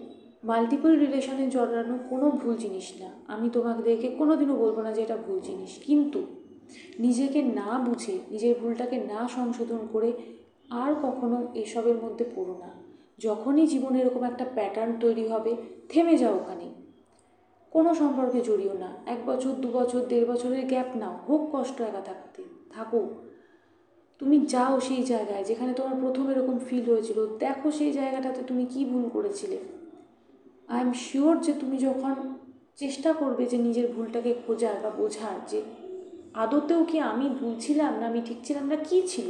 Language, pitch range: Bengali, 230-305 Hz